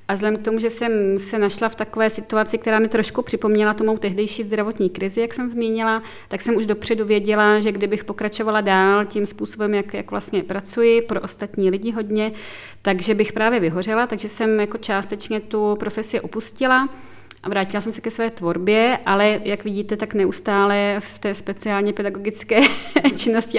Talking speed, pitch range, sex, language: 180 wpm, 195-215 Hz, female, Czech